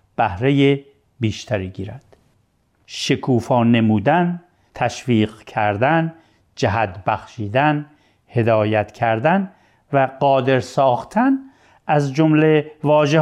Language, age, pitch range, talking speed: Persian, 50-69, 120-165 Hz, 75 wpm